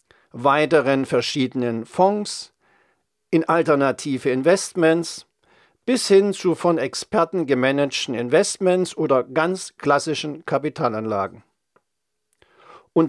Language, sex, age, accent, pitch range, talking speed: German, male, 50-69, German, 135-190 Hz, 85 wpm